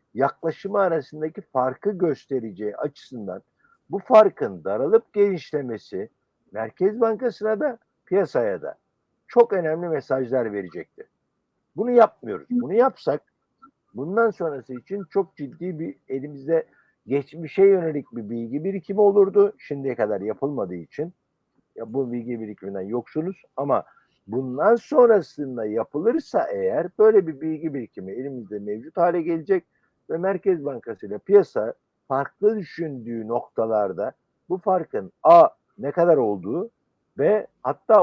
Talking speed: 115 wpm